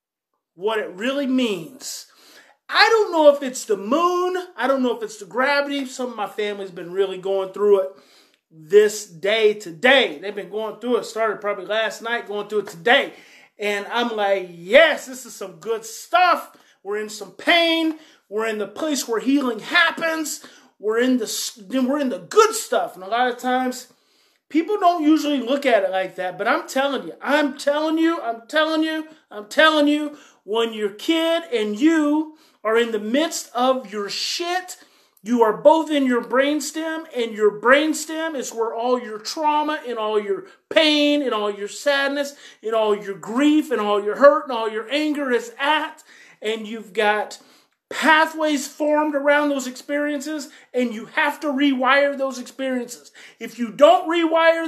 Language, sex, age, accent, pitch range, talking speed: English, male, 30-49, American, 220-310 Hz, 180 wpm